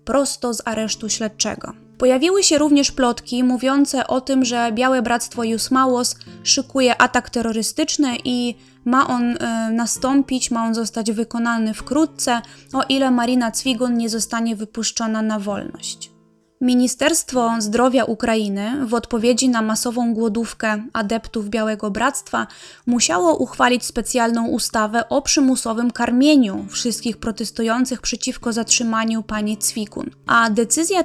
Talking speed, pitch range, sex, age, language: 120 wpm, 225-250 Hz, female, 20-39, Polish